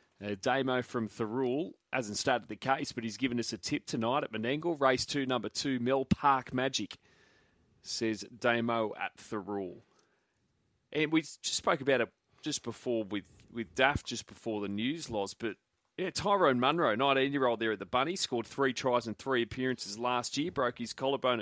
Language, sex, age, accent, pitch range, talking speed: English, male, 30-49, Australian, 110-135 Hz, 175 wpm